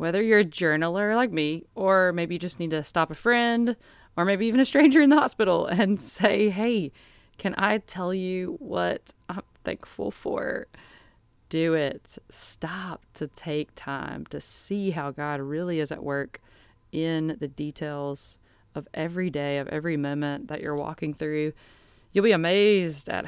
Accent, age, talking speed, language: American, 20-39, 170 wpm, English